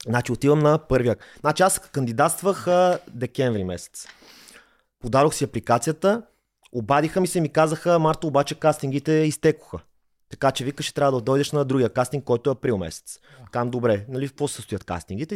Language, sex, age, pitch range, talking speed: Bulgarian, male, 30-49, 125-185 Hz, 165 wpm